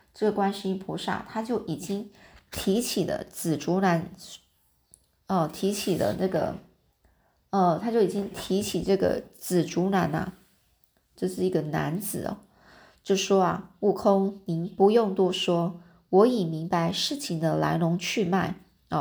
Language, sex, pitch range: Chinese, female, 175-215 Hz